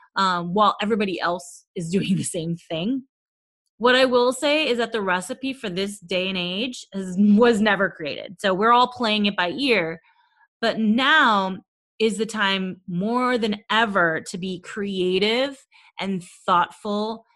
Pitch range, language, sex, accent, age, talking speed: 180-235 Hz, English, female, American, 30-49, 160 wpm